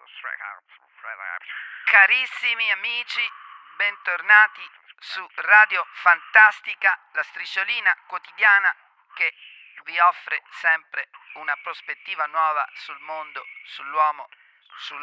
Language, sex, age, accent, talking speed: Italian, male, 40-59, native, 80 wpm